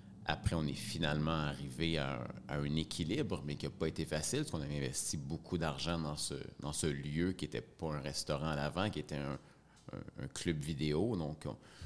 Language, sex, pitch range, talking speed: French, male, 75-90 Hz, 210 wpm